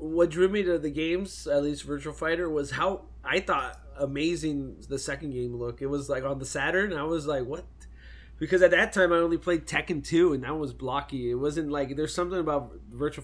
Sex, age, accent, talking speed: male, 20-39, American, 220 wpm